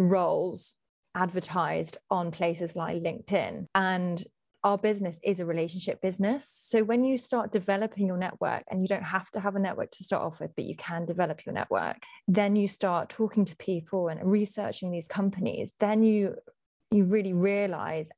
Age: 20-39